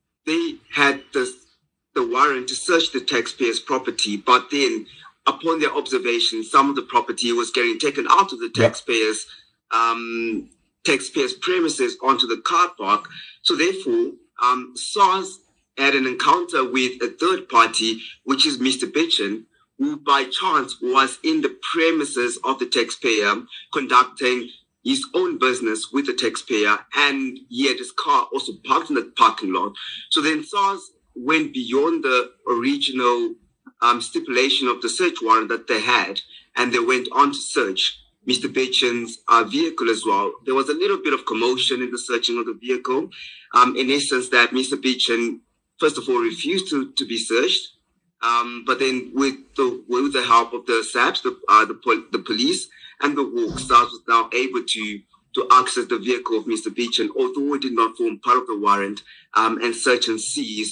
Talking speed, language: 175 wpm, English